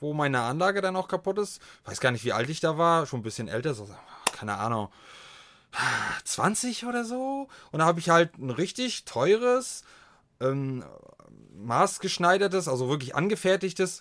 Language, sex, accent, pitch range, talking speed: German, male, German, 130-185 Hz, 165 wpm